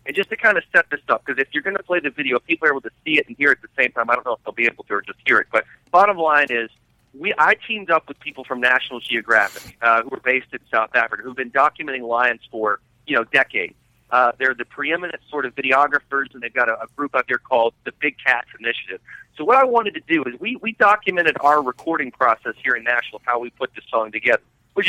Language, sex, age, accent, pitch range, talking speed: English, male, 40-59, American, 125-165 Hz, 270 wpm